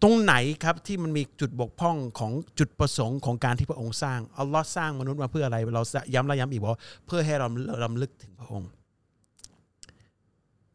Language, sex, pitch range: Thai, male, 110-145 Hz